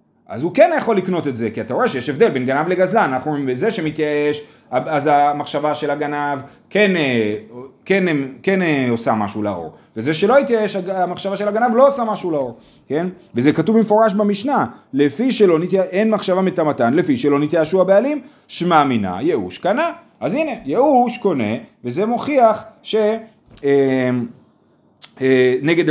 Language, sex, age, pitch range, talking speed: Hebrew, male, 30-49, 140-215 Hz, 150 wpm